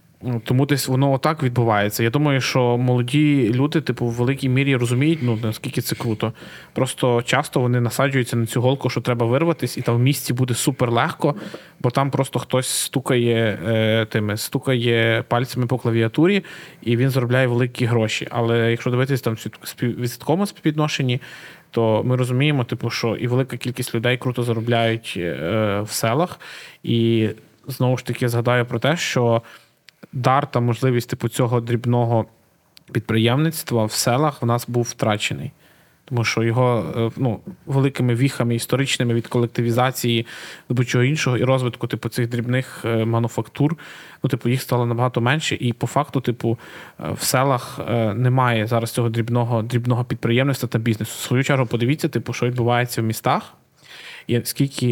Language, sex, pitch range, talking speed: Ukrainian, male, 115-130 Hz, 155 wpm